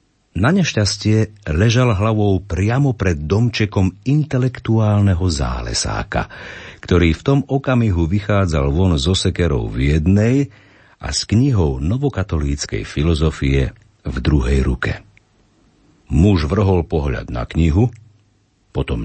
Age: 50-69